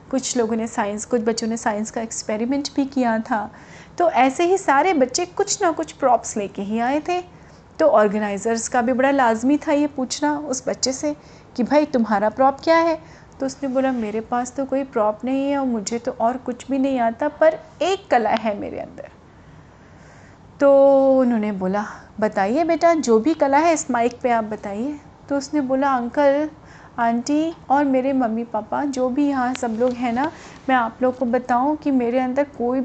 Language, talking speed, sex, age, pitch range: Hindi, 195 wpm, female, 30-49, 235-295 Hz